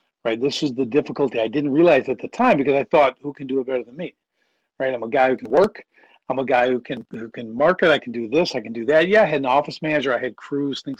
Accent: American